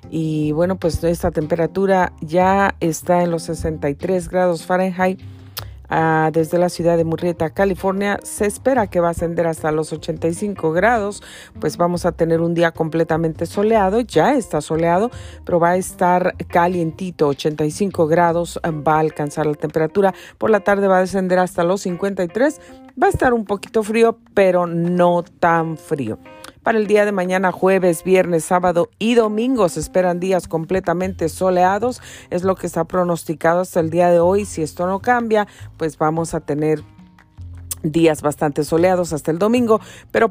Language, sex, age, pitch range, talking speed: Spanish, female, 40-59, 160-190 Hz, 165 wpm